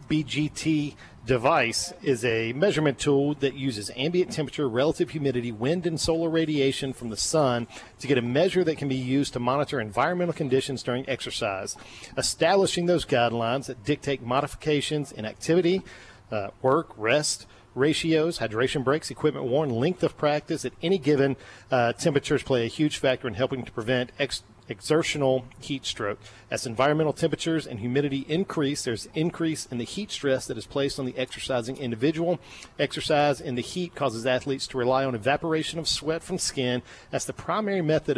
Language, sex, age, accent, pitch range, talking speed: English, male, 40-59, American, 125-155 Hz, 165 wpm